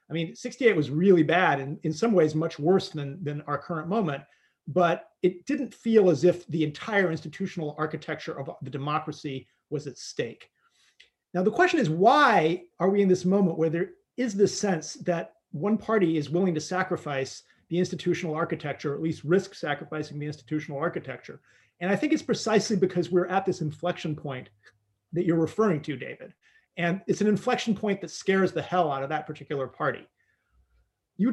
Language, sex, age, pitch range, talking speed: English, male, 40-59, 155-200 Hz, 185 wpm